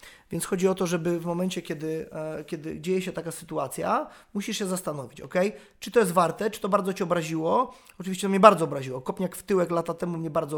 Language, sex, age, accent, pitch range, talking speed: Polish, male, 20-39, native, 155-185 Hz, 220 wpm